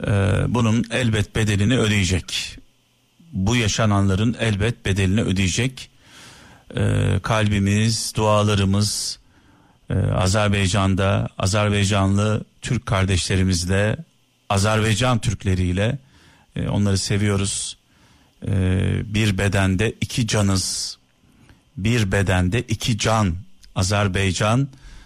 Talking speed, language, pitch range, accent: 65 wpm, Turkish, 100-125 Hz, native